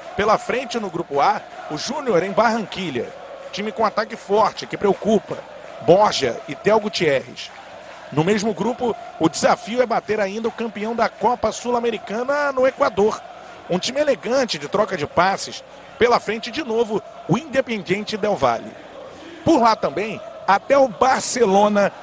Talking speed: 150 wpm